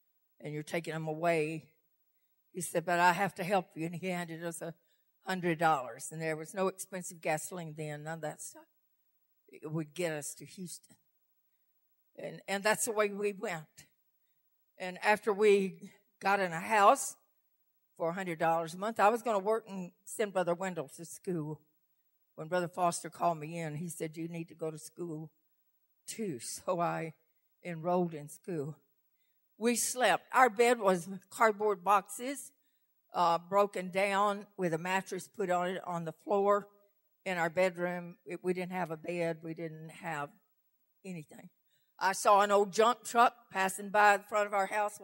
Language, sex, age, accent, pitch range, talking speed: English, female, 60-79, American, 155-205 Hz, 170 wpm